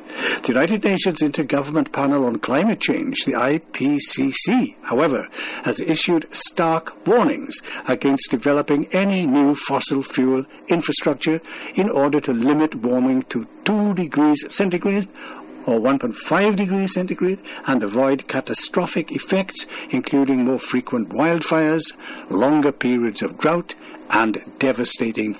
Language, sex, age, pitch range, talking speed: English, male, 60-79, 130-175 Hz, 115 wpm